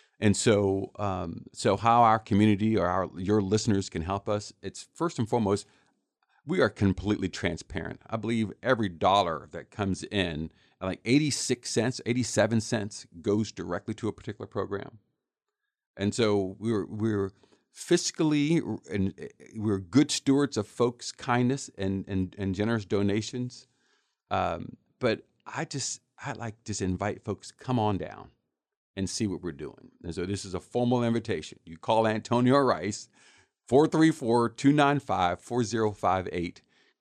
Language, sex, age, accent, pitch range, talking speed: English, male, 50-69, American, 95-120 Hz, 145 wpm